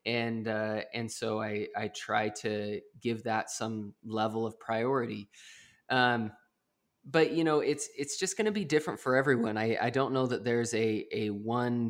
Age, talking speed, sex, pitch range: 20-39, 180 wpm, male, 110-125 Hz